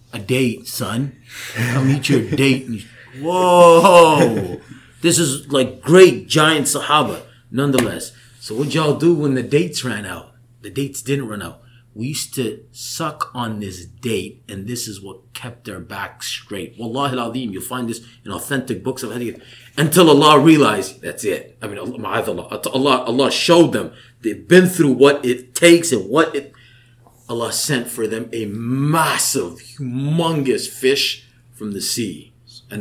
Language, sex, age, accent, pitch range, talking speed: English, male, 30-49, American, 115-140 Hz, 160 wpm